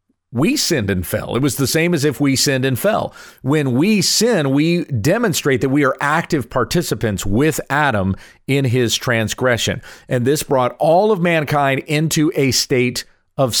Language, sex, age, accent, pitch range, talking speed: English, male, 40-59, American, 120-155 Hz, 170 wpm